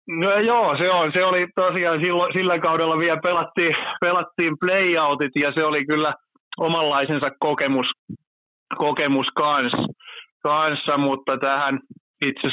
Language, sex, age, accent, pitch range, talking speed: Finnish, male, 30-49, native, 120-150 Hz, 125 wpm